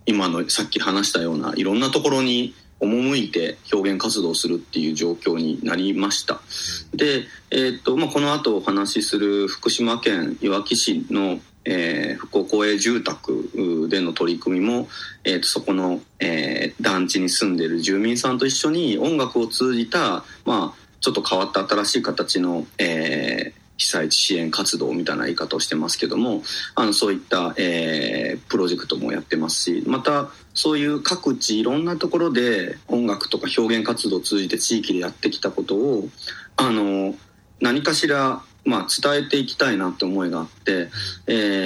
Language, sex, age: Japanese, male, 30-49